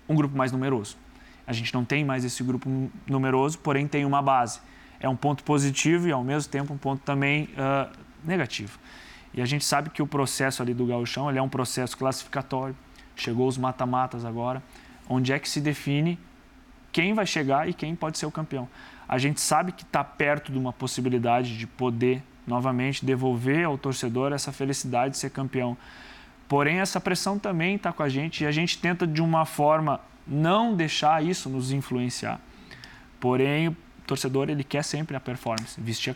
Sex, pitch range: male, 125-145 Hz